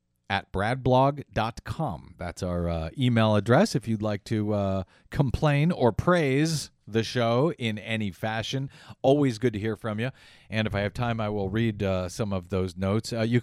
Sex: male